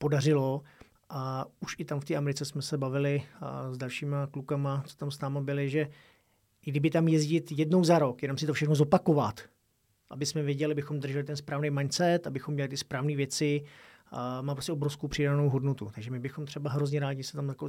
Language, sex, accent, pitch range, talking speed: Czech, male, native, 135-150 Hz, 200 wpm